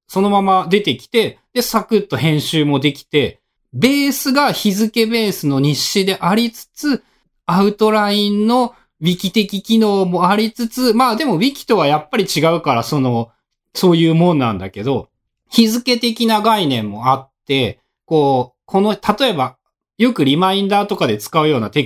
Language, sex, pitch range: Japanese, male, 140-210 Hz